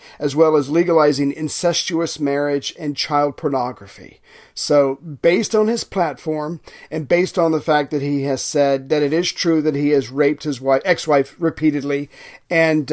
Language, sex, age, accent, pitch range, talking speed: English, male, 40-59, American, 145-170 Hz, 165 wpm